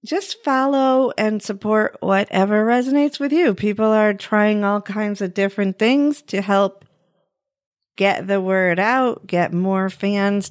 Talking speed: 145 wpm